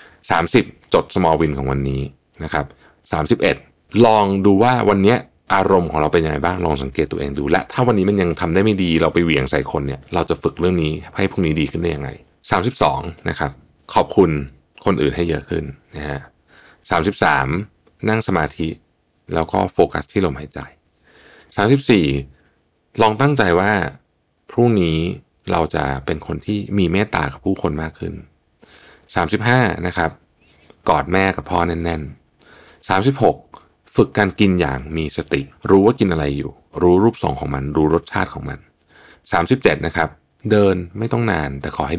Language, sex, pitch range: Thai, male, 75-100 Hz